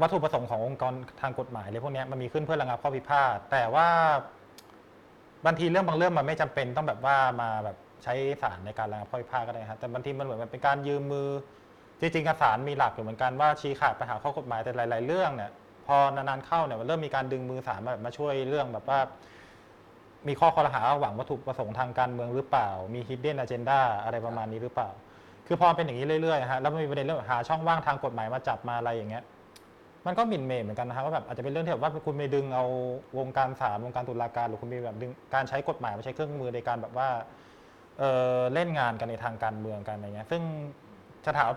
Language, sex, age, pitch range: Thai, male, 20-39, 120-150 Hz